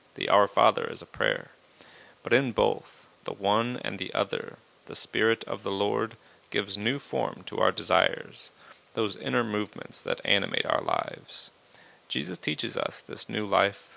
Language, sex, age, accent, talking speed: English, male, 30-49, American, 165 wpm